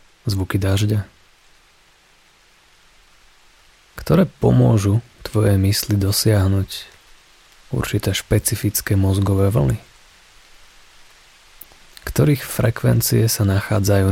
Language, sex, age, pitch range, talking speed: Slovak, male, 30-49, 95-110 Hz, 65 wpm